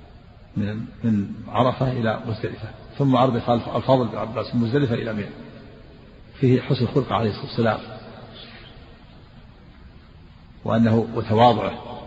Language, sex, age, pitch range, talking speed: Arabic, male, 50-69, 110-125 Hz, 100 wpm